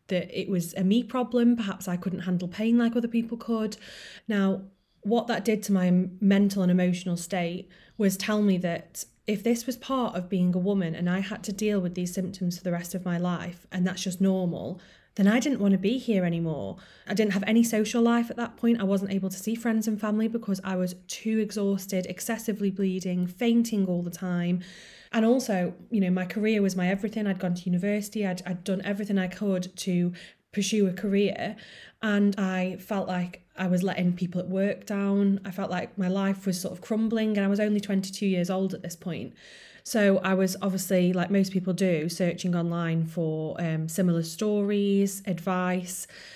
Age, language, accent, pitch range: 20-39, English, British, 180-210 Hz